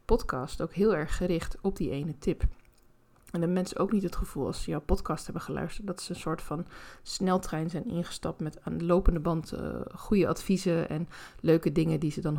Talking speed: 210 wpm